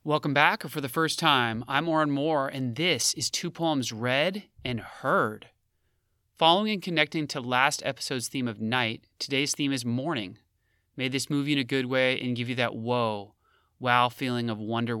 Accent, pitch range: American, 120-140 Hz